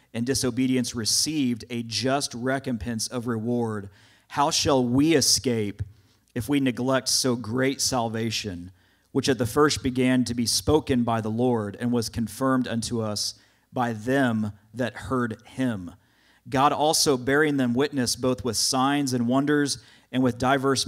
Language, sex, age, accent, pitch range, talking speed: English, male, 40-59, American, 110-135 Hz, 150 wpm